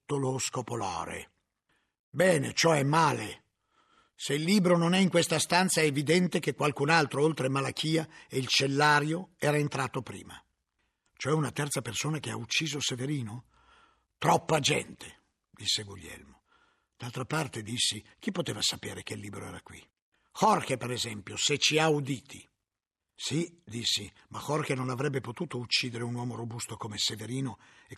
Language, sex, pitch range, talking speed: Italian, male, 120-175 Hz, 150 wpm